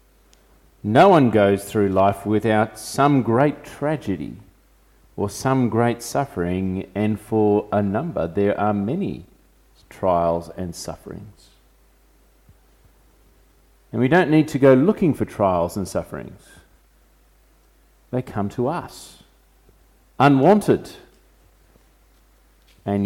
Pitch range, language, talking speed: 100-140 Hz, English, 105 wpm